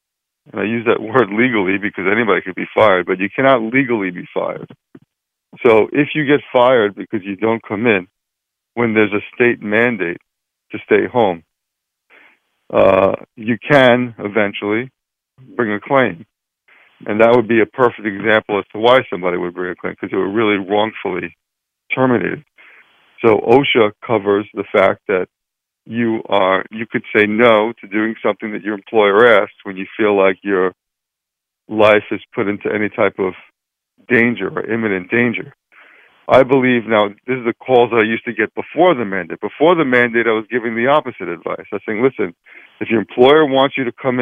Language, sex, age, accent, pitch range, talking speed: English, male, 50-69, American, 105-120 Hz, 180 wpm